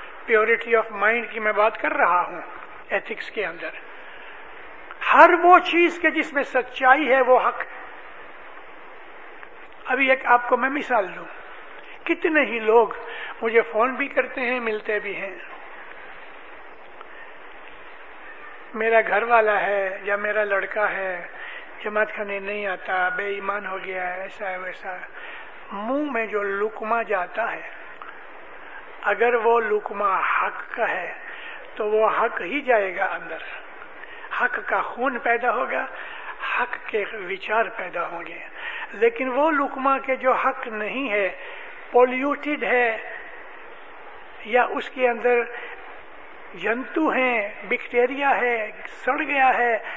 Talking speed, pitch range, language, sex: 125 wpm, 215-270 Hz, English, male